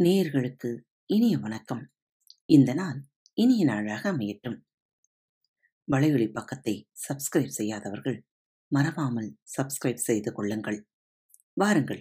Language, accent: Tamil, native